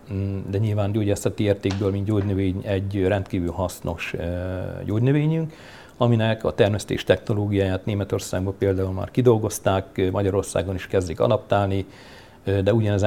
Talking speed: 110 wpm